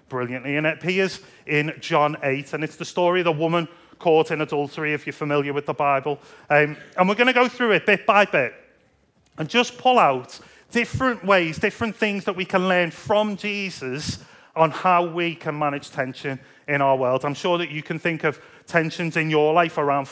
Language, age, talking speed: English, 30-49, 205 wpm